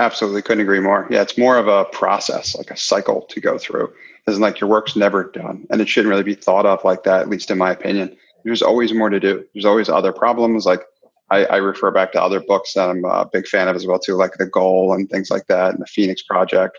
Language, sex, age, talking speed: English, male, 30-49, 260 wpm